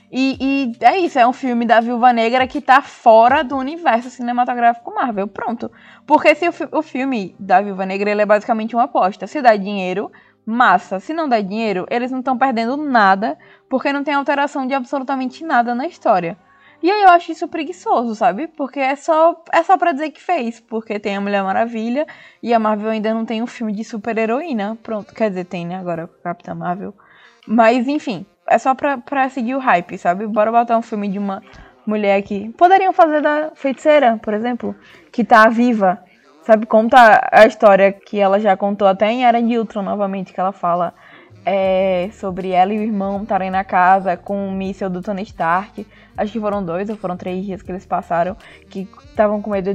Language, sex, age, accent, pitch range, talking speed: Portuguese, female, 20-39, Brazilian, 195-265 Hz, 205 wpm